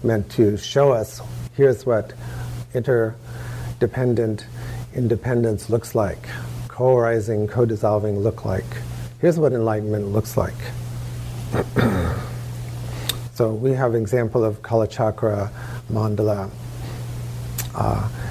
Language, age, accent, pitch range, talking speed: English, 50-69, American, 105-120 Hz, 90 wpm